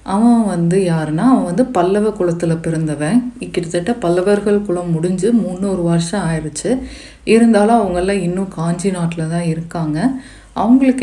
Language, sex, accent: Tamil, female, native